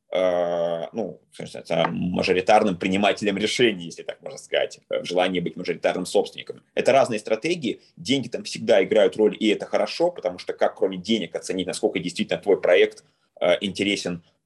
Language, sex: Russian, male